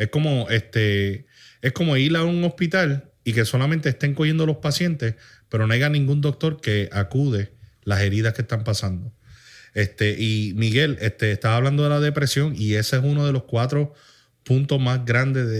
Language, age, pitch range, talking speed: Spanish, 30-49, 105-135 Hz, 180 wpm